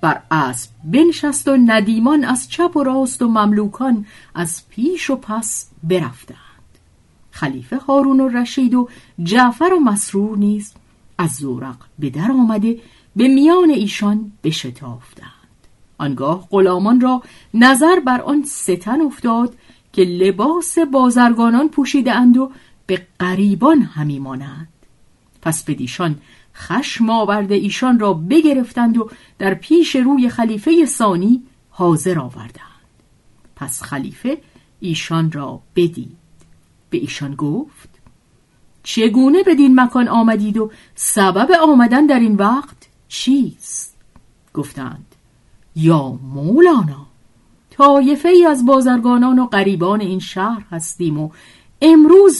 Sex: female